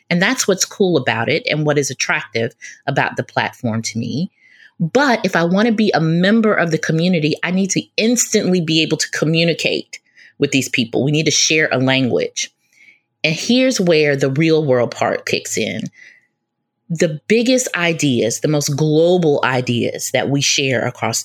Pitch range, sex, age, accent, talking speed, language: 150-210 Hz, female, 30-49, American, 180 wpm, English